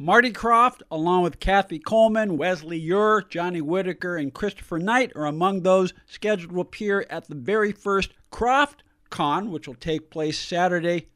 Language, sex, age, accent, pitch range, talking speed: English, male, 50-69, American, 150-195 Hz, 160 wpm